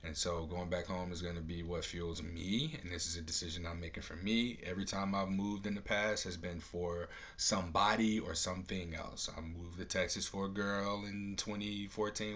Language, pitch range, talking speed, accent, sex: English, 85-100 Hz, 215 wpm, American, male